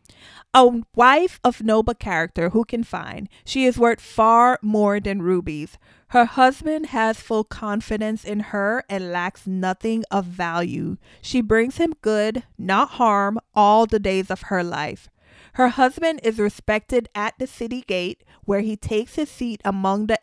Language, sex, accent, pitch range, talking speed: English, female, American, 190-225 Hz, 160 wpm